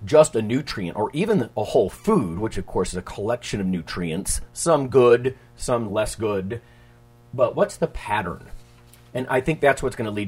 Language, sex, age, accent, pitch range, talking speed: English, male, 40-59, American, 100-120 Hz, 195 wpm